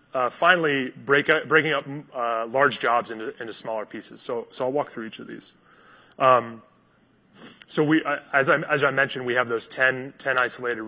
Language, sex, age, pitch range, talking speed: English, male, 30-49, 110-135 Hz, 205 wpm